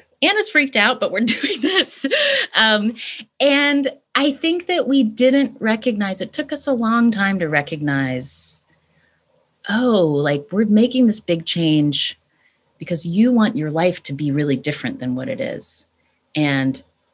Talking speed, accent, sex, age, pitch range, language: 155 wpm, American, female, 30-49, 145-220 Hz, English